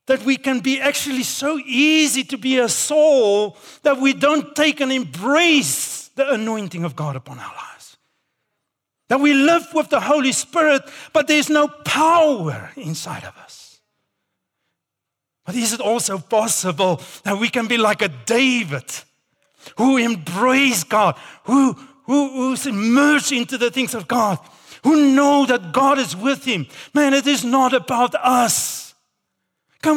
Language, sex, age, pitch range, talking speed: English, male, 50-69, 190-280 Hz, 150 wpm